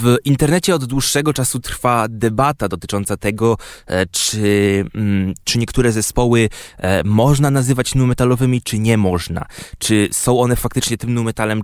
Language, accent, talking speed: Polish, native, 130 wpm